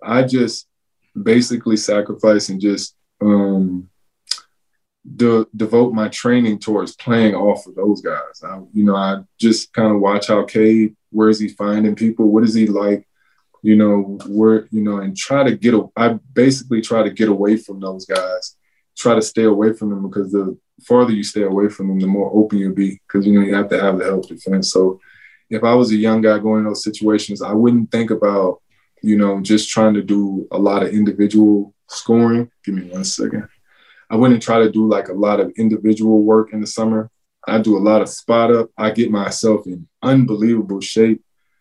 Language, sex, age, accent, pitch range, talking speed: English, male, 20-39, American, 100-110 Hz, 205 wpm